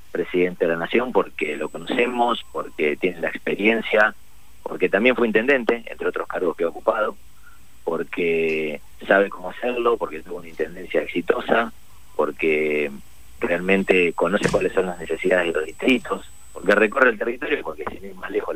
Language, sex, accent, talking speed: Spanish, male, Argentinian, 160 wpm